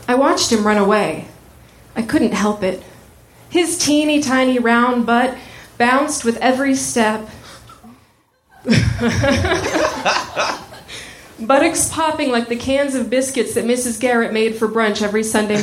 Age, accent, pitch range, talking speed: 30-49, American, 220-280 Hz, 125 wpm